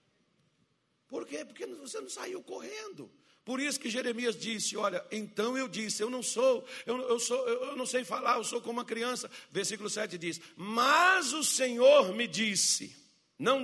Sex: male